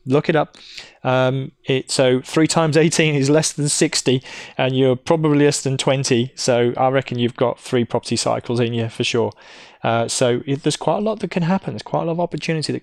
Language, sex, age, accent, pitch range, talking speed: English, male, 20-39, British, 130-185 Hz, 215 wpm